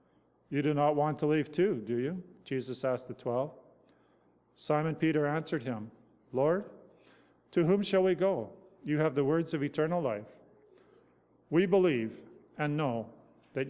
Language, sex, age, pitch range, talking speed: English, male, 40-59, 135-175 Hz, 155 wpm